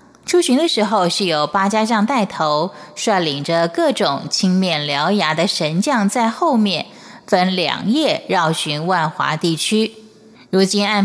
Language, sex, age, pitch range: Japanese, female, 20-39, 170-225 Hz